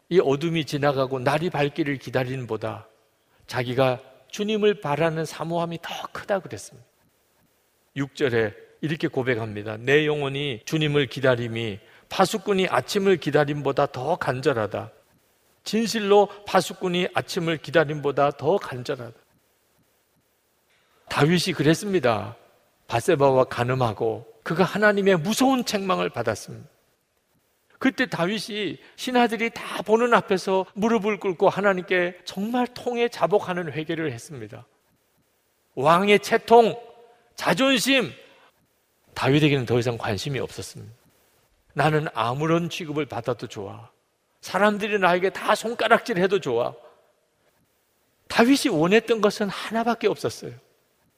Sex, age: male, 50-69